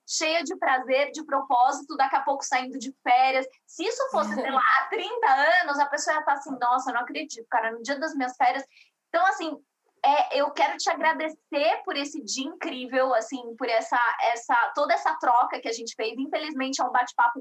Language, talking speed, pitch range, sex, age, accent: Portuguese, 200 wpm, 255-320 Hz, female, 20-39, Brazilian